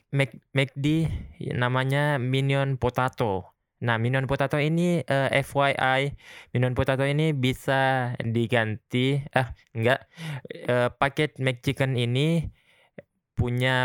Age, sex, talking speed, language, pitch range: 20-39, male, 95 wpm, Indonesian, 115-135 Hz